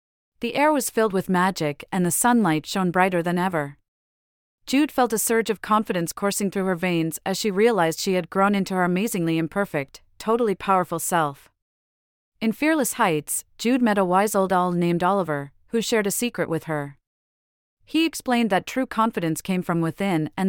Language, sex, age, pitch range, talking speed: English, female, 40-59, 165-220 Hz, 180 wpm